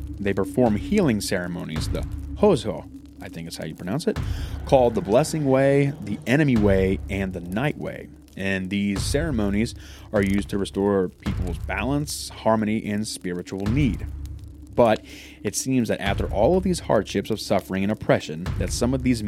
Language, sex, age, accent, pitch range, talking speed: English, male, 30-49, American, 95-110 Hz, 170 wpm